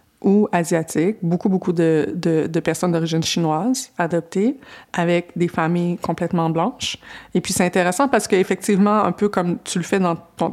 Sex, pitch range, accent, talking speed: female, 170-210 Hz, Canadian, 170 wpm